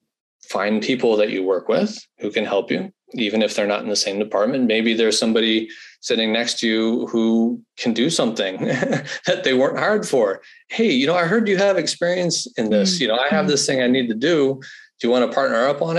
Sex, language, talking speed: male, English, 230 wpm